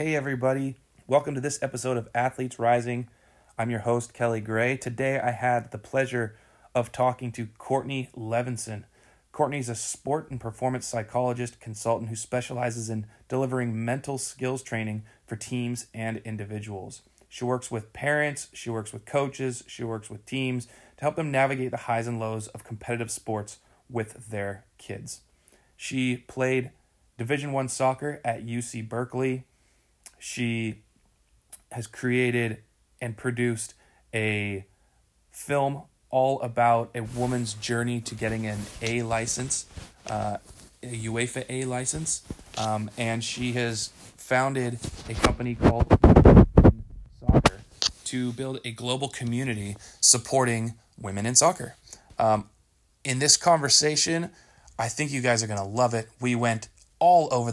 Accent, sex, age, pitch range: American, male, 30-49, 110-130 Hz